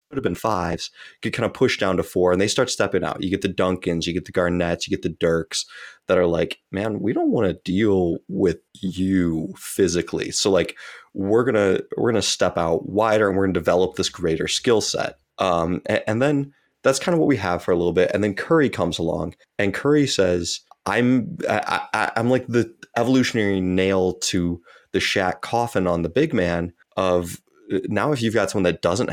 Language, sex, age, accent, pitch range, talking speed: English, male, 20-39, American, 90-125 Hz, 210 wpm